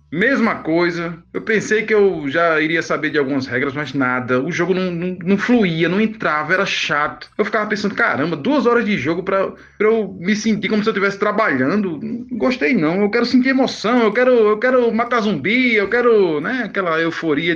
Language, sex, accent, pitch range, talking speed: Portuguese, male, Brazilian, 165-240 Hz, 205 wpm